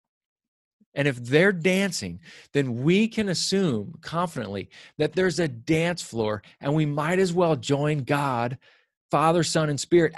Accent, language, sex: American, English, male